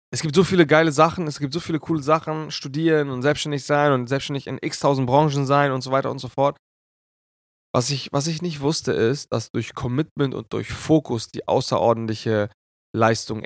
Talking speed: 190 wpm